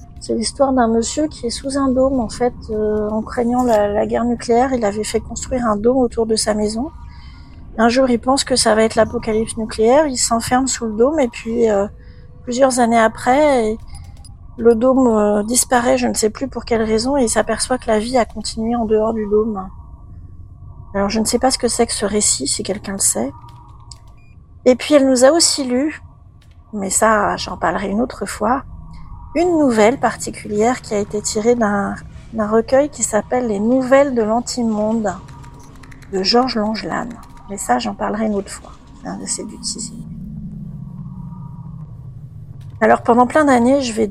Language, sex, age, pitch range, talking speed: French, female, 40-59, 200-245 Hz, 185 wpm